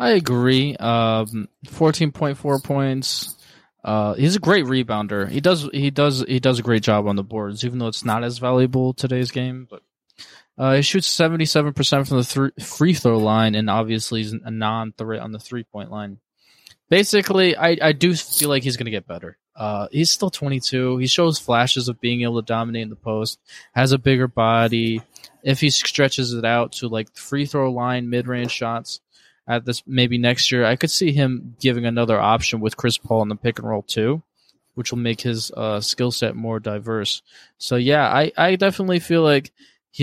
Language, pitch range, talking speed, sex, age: English, 110-140 Hz, 205 wpm, male, 20-39